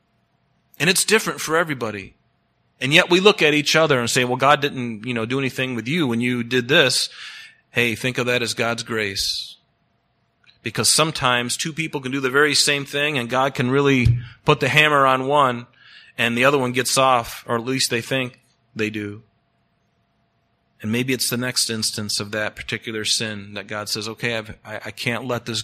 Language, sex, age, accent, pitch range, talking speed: English, male, 30-49, American, 115-135 Hz, 195 wpm